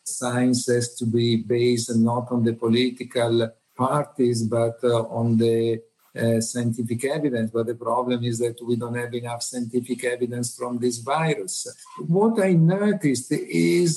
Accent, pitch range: native, 125-150 Hz